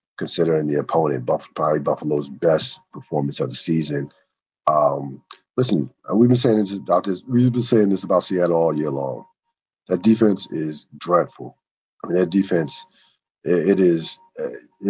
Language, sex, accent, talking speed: English, male, American, 155 wpm